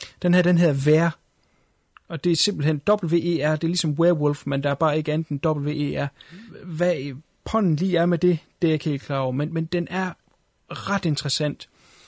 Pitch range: 135-165 Hz